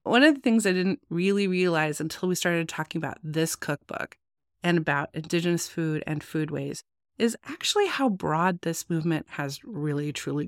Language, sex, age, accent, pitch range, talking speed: English, female, 30-49, American, 160-210 Hz, 170 wpm